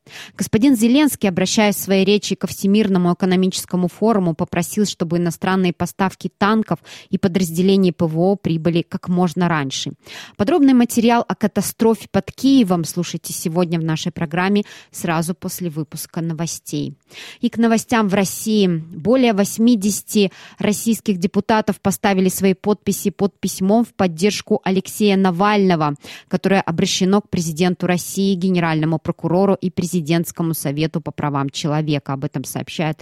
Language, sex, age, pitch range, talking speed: Russian, female, 20-39, 165-200 Hz, 130 wpm